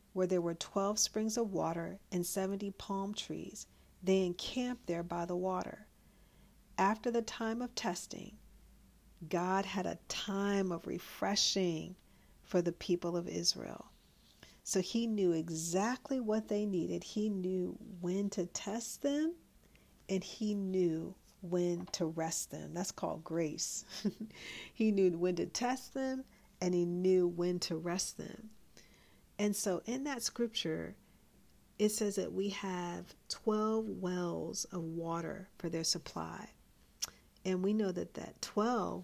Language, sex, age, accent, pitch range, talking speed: English, female, 50-69, American, 175-205 Hz, 140 wpm